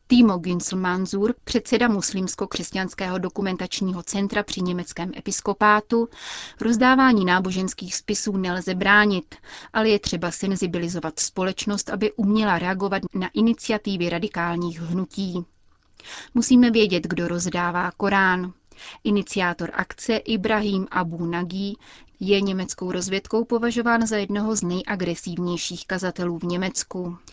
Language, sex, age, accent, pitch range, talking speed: Czech, female, 30-49, native, 180-215 Hz, 105 wpm